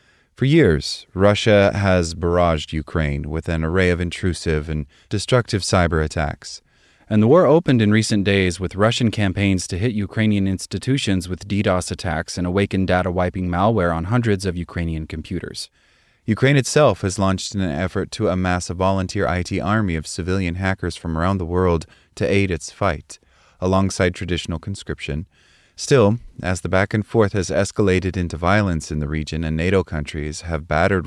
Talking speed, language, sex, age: 165 wpm, English, male, 30-49